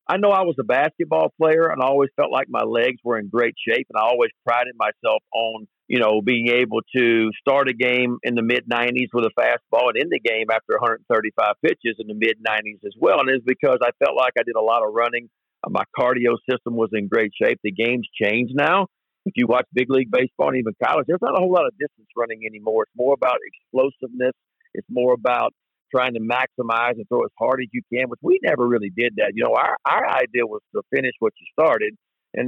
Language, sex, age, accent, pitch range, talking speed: English, male, 50-69, American, 115-145 Hz, 235 wpm